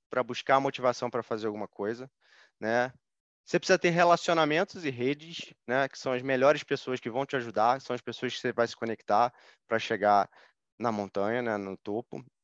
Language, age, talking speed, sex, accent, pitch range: Portuguese, 20-39, 190 wpm, male, Brazilian, 130-170 Hz